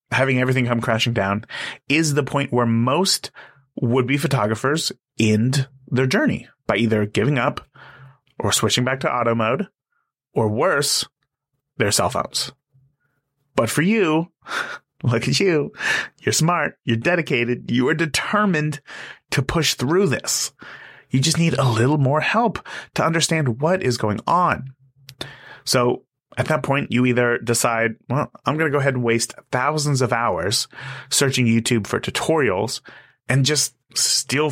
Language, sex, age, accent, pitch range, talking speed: English, male, 30-49, American, 115-145 Hz, 150 wpm